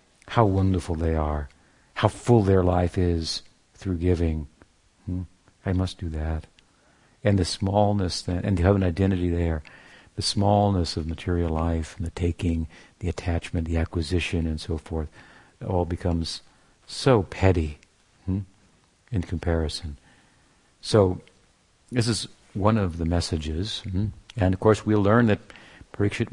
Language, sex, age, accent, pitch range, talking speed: English, male, 60-79, American, 85-105 Hz, 145 wpm